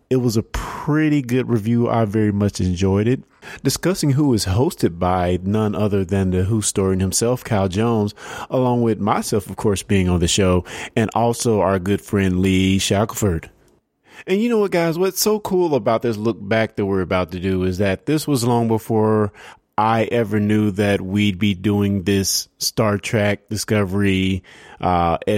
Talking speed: 180 wpm